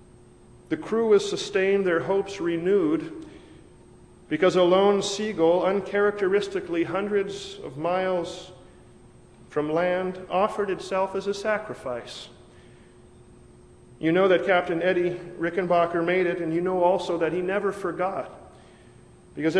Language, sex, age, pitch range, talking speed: English, male, 40-59, 160-195 Hz, 120 wpm